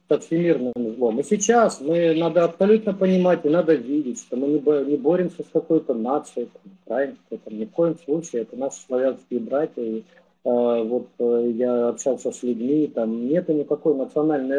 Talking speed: 165 wpm